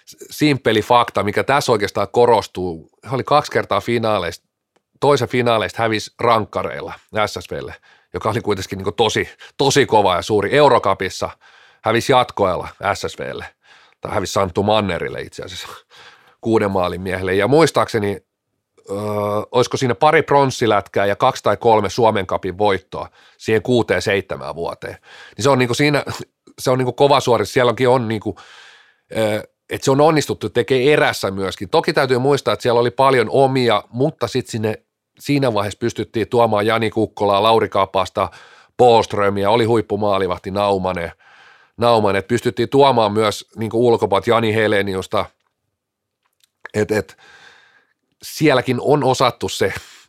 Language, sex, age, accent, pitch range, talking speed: Finnish, male, 40-59, native, 100-125 Hz, 135 wpm